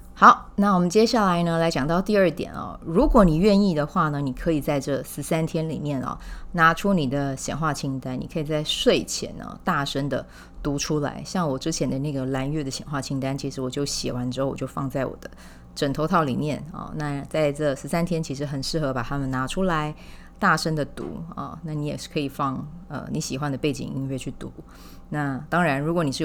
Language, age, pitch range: Chinese, 20-39, 135-175 Hz